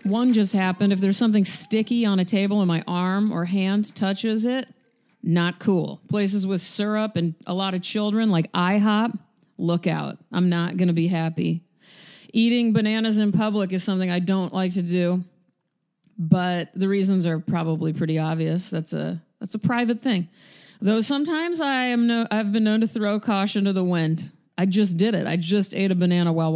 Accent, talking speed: American, 190 wpm